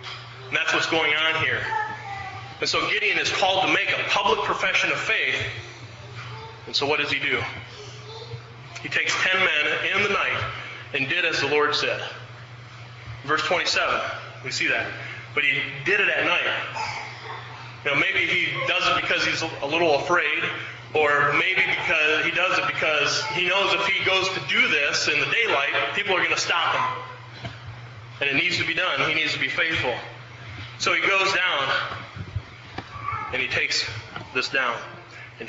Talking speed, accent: 175 wpm, American